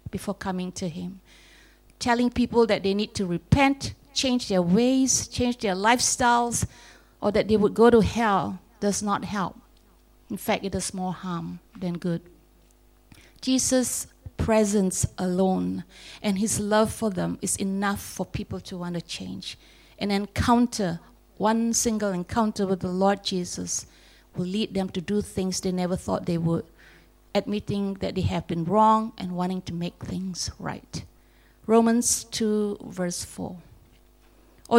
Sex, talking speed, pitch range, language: female, 150 wpm, 180-220 Hz, English